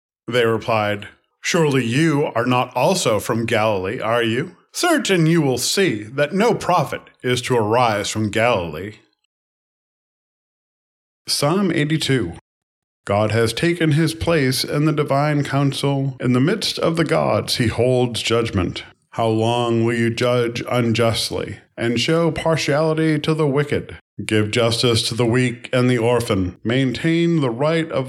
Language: English